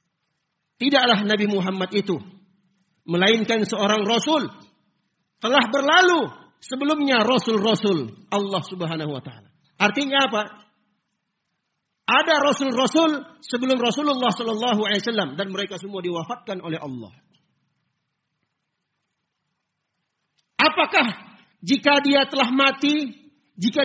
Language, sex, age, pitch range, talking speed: Indonesian, male, 50-69, 180-260 Hz, 90 wpm